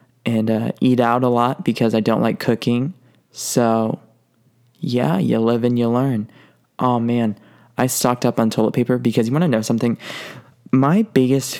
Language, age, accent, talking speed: English, 20-39, American, 170 wpm